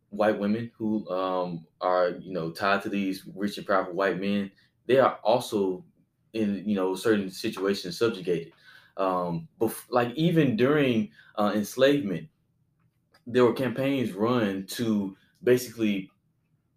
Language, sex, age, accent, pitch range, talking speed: English, male, 20-39, American, 95-125 Hz, 130 wpm